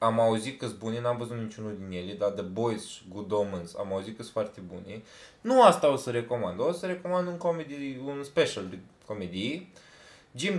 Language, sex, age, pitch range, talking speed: Romanian, male, 20-39, 105-150 Hz, 205 wpm